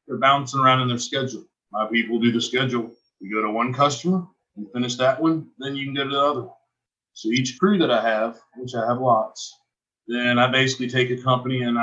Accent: American